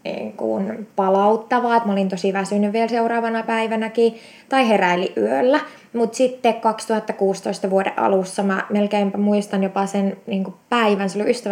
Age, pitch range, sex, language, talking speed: 20-39, 200-235 Hz, female, Finnish, 140 wpm